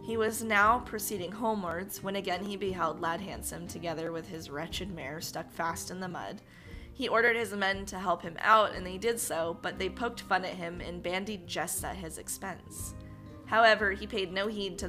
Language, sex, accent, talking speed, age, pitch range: English, female, American, 205 wpm, 20-39, 170-215 Hz